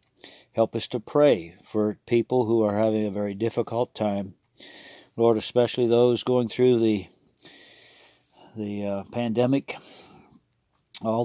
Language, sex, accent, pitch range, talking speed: English, male, American, 105-115 Hz, 125 wpm